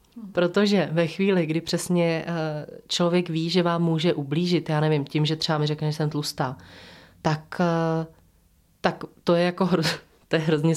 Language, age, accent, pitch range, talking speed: Czech, 20-39, native, 160-190 Hz, 150 wpm